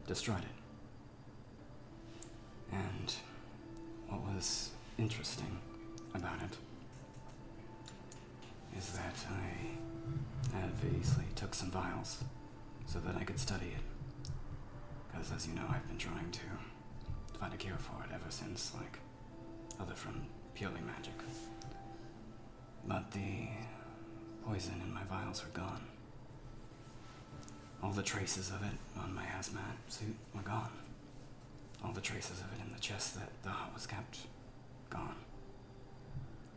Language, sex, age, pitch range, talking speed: English, male, 30-49, 100-120 Hz, 120 wpm